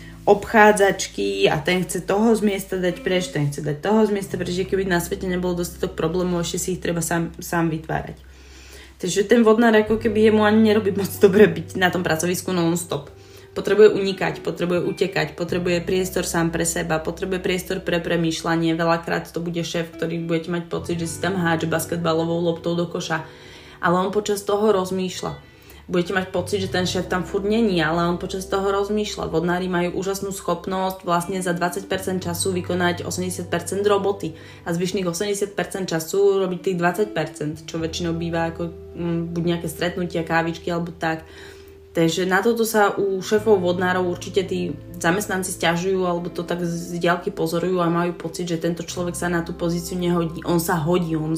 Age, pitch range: 20-39, 165-190 Hz